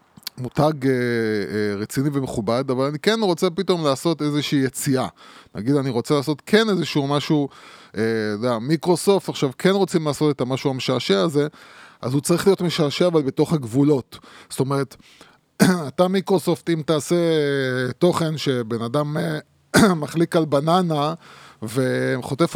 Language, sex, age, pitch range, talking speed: Hebrew, male, 20-39, 130-170 Hz, 140 wpm